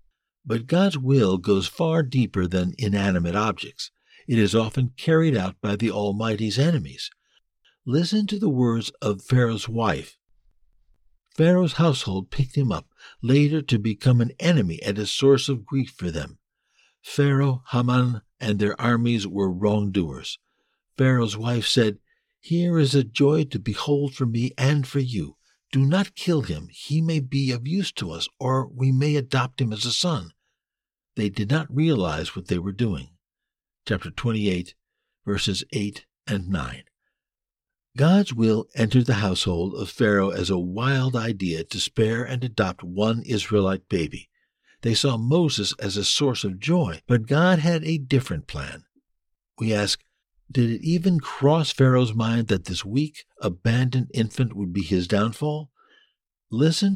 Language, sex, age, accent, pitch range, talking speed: English, male, 60-79, American, 105-140 Hz, 155 wpm